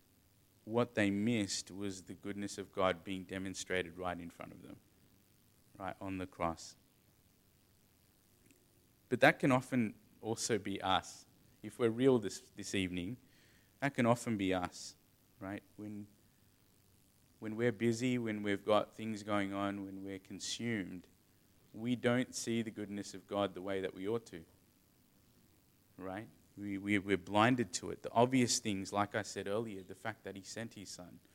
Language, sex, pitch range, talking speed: English, male, 95-110 Hz, 165 wpm